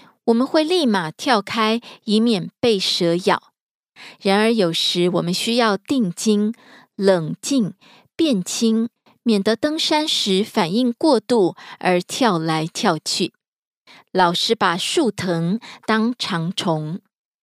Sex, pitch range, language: female, 185-235 Hz, Korean